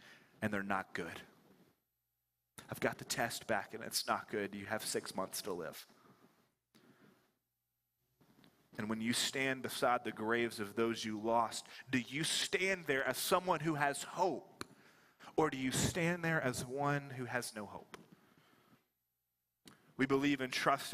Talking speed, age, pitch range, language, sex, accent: 155 wpm, 30-49, 120-160 Hz, English, male, American